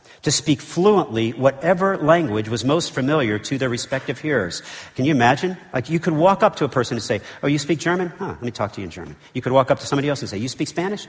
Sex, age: male, 50-69